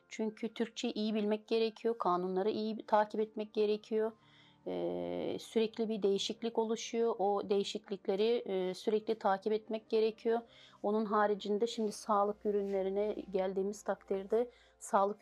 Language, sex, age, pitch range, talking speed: Turkish, female, 40-59, 185-220 Hz, 110 wpm